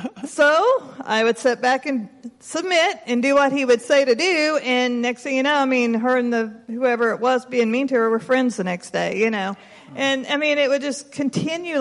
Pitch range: 215-260 Hz